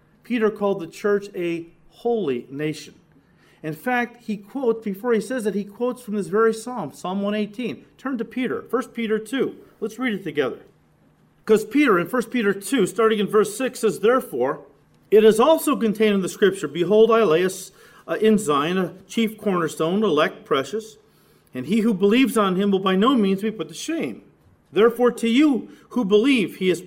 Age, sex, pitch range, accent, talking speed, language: 40-59, male, 170-225 Hz, American, 190 wpm, English